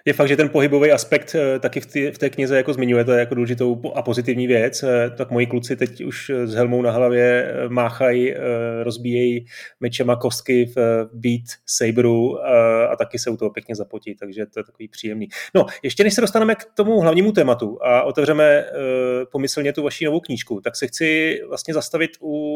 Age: 30-49